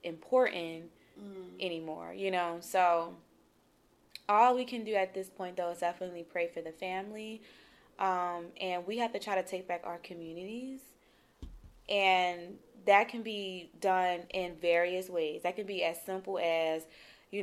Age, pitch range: 20-39, 165-195 Hz